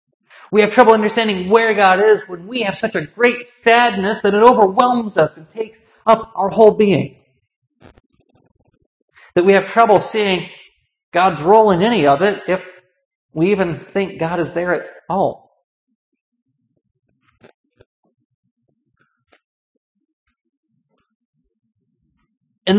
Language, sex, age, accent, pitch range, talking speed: English, male, 50-69, American, 180-220 Hz, 120 wpm